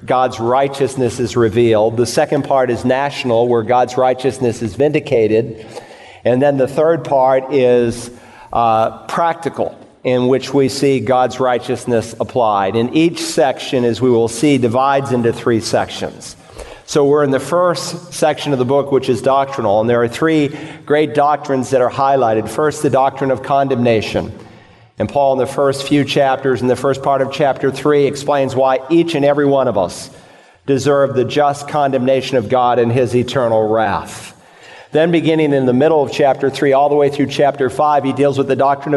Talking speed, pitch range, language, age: 180 wpm, 125-145 Hz, English, 50-69